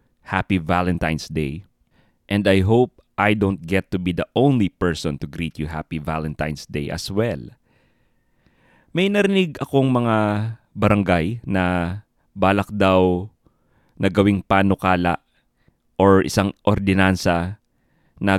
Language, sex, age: English, male, 20-39